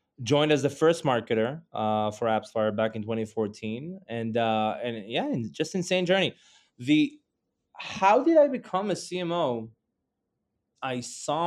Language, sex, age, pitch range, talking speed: English, male, 20-39, 120-155 Hz, 140 wpm